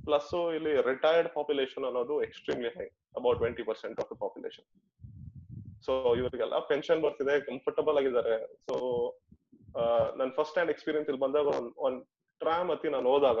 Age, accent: 20-39, native